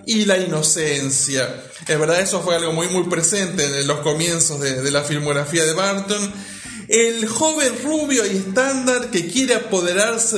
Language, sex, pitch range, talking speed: Spanish, male, 175-240 Hz, 160 wpm